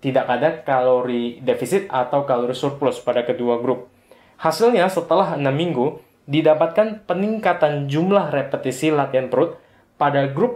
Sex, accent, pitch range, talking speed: male, native, 125-160 Hz, 125 wpm